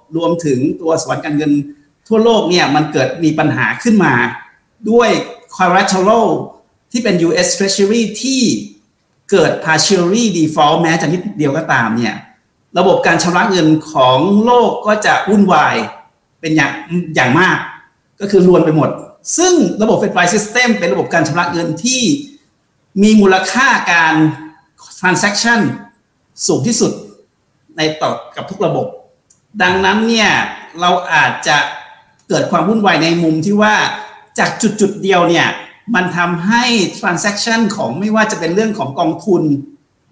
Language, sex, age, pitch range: Thai, male, 60-79, 155-215 Hz